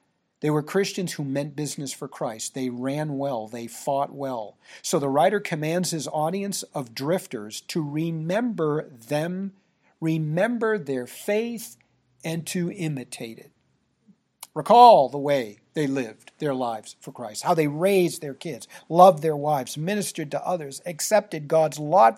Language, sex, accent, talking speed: English, male, American, 150 wpm